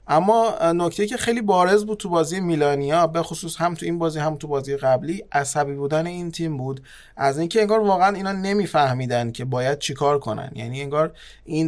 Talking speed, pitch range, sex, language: 200 wpm, 140-170 Hz, male, Persian